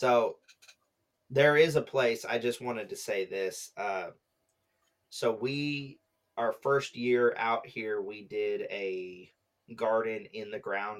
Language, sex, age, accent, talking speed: English, male, 30-49, American, 140 wpm